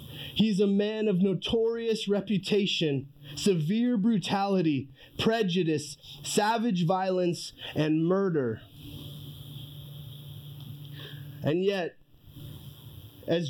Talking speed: 70 wpm